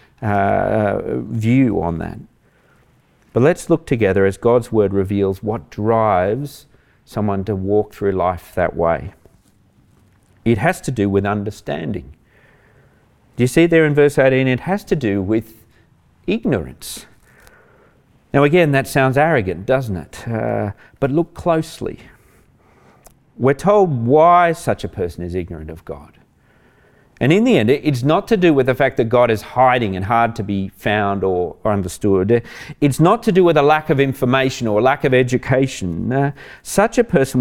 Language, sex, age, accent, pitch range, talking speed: English, male, 40-59, Australian, 105-140 Hz, 160 wpm